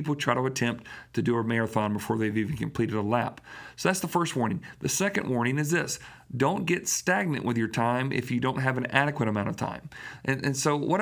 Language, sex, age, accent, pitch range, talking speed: English, male, 40-59, American, 115-145 Hz, 235 wpm